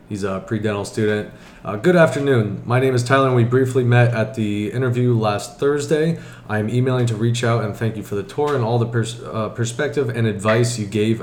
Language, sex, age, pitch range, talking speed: English, male, 20-39, 105-120 Hz, 215 wpm